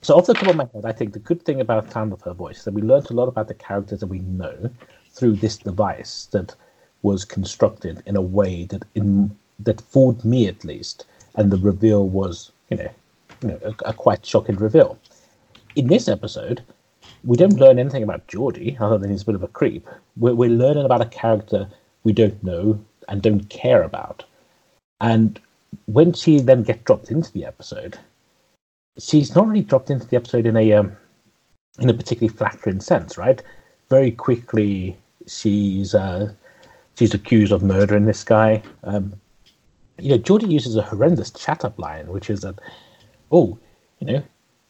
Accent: British